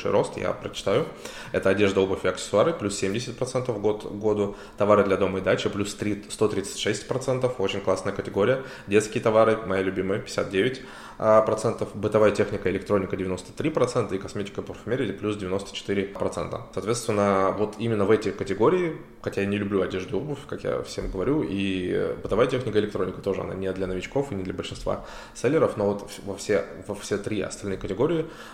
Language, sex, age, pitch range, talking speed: Russian, male, 20-39, 95-110 Hz, 170 wpm